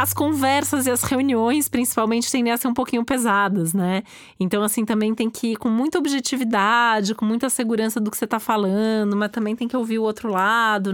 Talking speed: 210 wpm